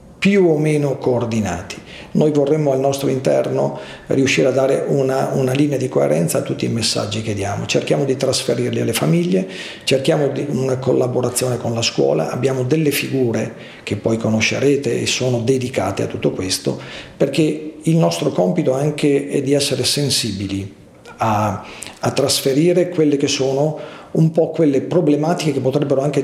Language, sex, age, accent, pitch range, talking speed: Italian, male, 40-59, native, 105-140 Hz, 160 wpm